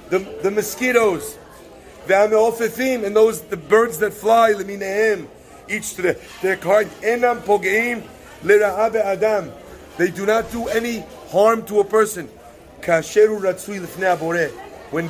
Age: 40-59